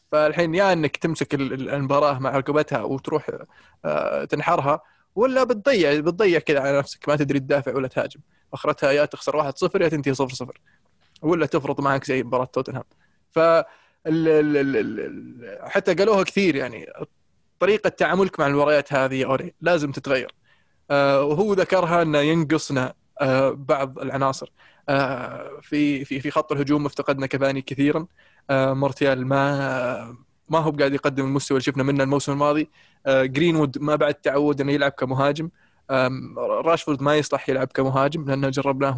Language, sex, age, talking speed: Arabic, male, 20-39, 135 wpm